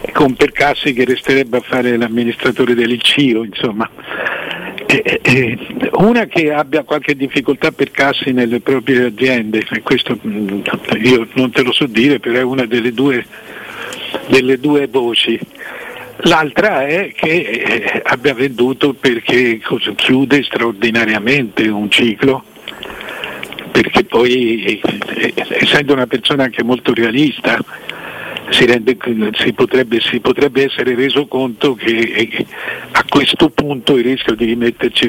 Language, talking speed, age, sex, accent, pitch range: Italian, 120 wpm, 60-79, male, native, 120-135 Hz